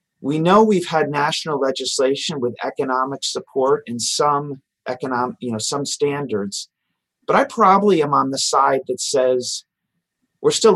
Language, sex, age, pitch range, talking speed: English, male, 40-59, 125-190 Hz, 150 wpm